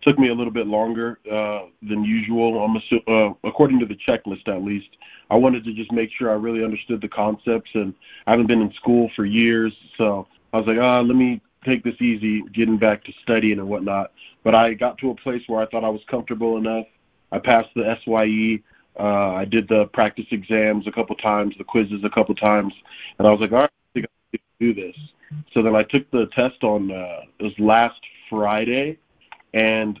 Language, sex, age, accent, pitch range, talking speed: English, male, 20-39, American, 105-120 Hz, 215 wpm